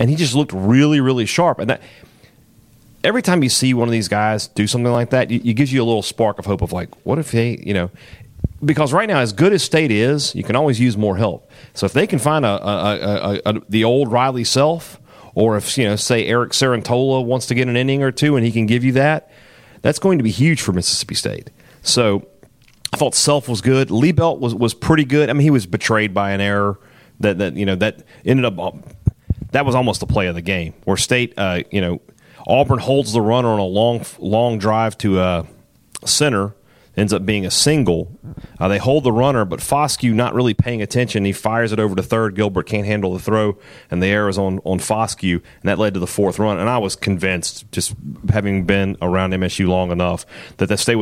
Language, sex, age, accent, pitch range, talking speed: English, male, 30-49, American, 100-130 Hz, 240 wpm